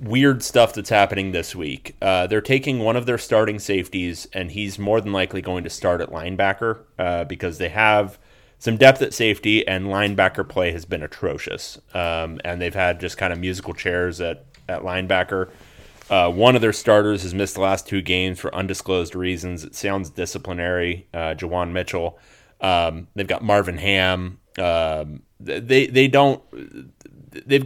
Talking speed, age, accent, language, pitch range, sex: 175 wpm, 30-49, American, English, 90-115 Hz, male